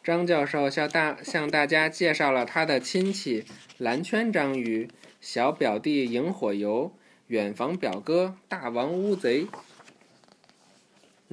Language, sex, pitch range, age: Chinese, male, 120-180 Hz, 20-39